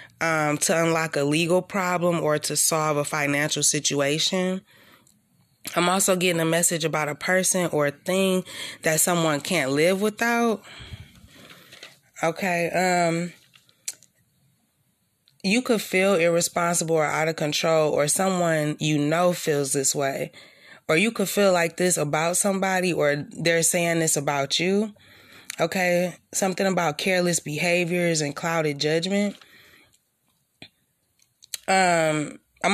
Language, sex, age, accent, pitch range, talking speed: English, female, 20-39, American, 155-195 Hz, 125 wpm